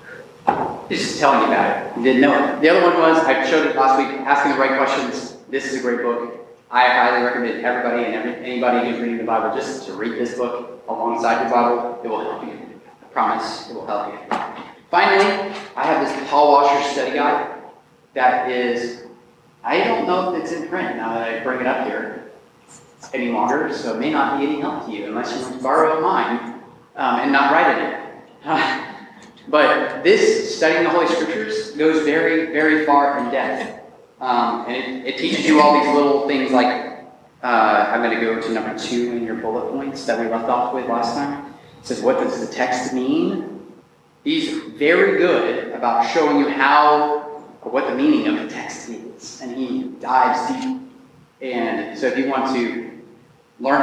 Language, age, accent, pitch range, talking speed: English, 30-49, American, 120-155 Hz, 200 wpm